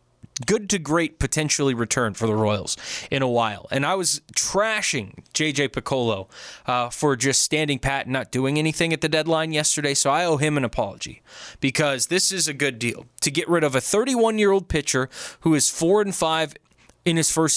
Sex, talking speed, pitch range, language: male, 195 wpm, 125-165 Hz, English